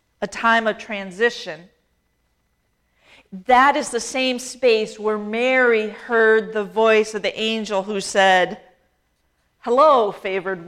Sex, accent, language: female, American, English